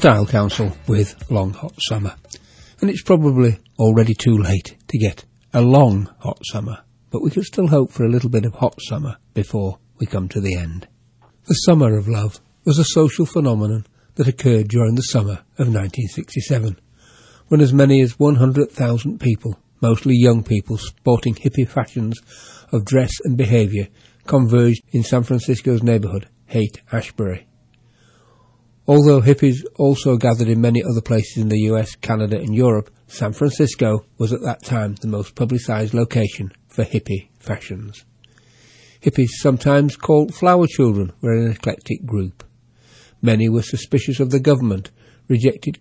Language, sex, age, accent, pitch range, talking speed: English, male, 60-79, British, 110-130 Hz, 155 wpm